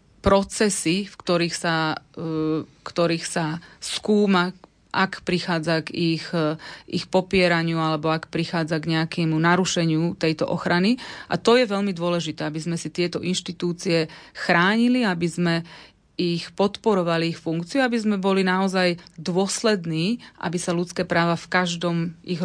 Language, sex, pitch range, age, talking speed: Slovak, female, 165-185 Hz, 30-49, 135 wpm